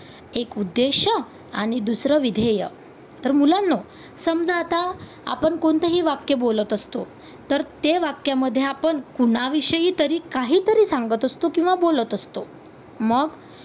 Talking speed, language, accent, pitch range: 120 wpm, Marathi, native, 230-320 Hz